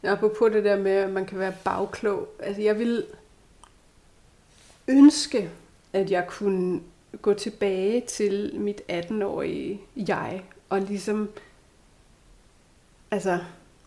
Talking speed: 115 wpm